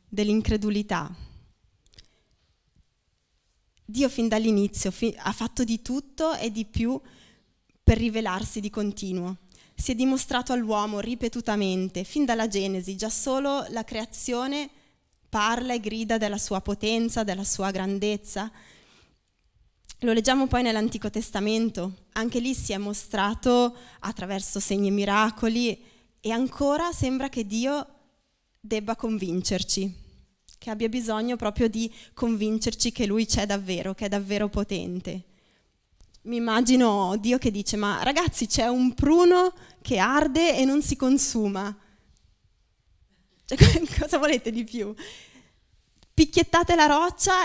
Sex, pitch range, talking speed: female, 205-270 Hz, 120 wpm